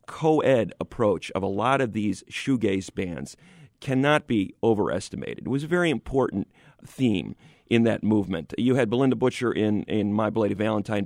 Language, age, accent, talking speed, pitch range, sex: English, 40-59, American, 165 wpm, 105-135 Hz, male